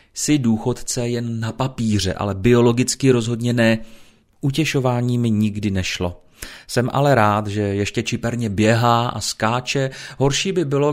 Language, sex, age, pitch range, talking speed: Czech, male, 30-49, 105-130 Hz, 135 wpm